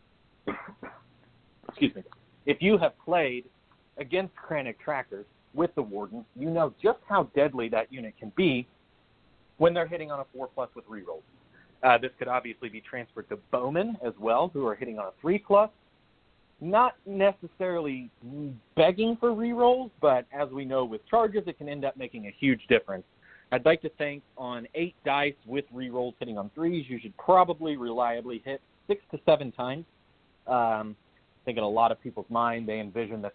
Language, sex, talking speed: English, male, 180 wpm